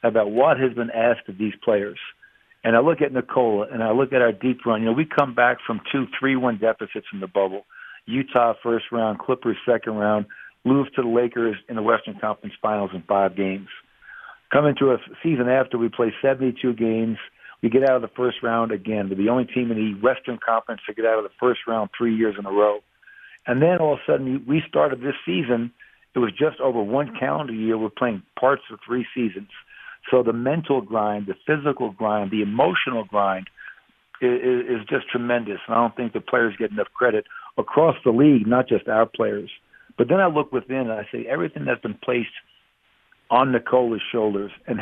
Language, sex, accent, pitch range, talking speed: English, male, American, 110-125 Hz, 210 wpm